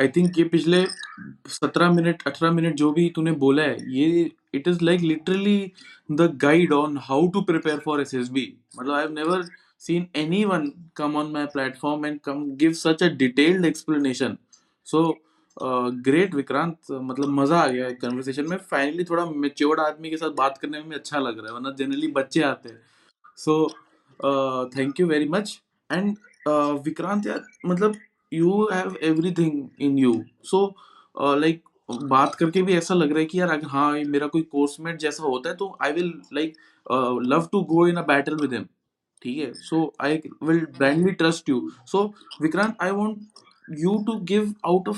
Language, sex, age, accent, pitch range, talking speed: Hindi, male, 20-39, native, 140-180 Hz, 165 wpm